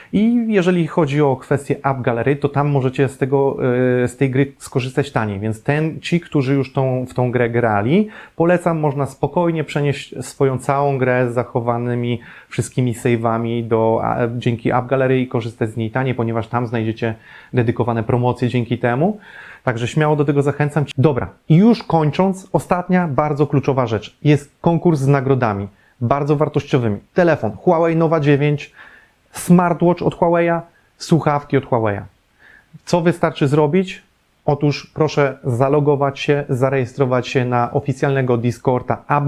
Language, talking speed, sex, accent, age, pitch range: Polish, 145 wpm, male, native, 30-49, 125-160 Hz